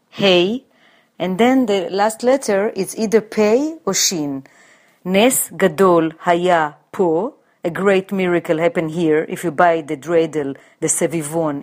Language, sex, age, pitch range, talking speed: English, female, 40-59, 165-200 Hz, 140 wpm